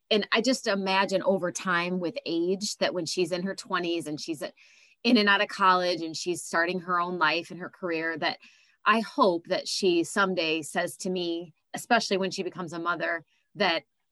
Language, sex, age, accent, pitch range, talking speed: English, female, 30-49, American, 165-200 Hz, 195 wpm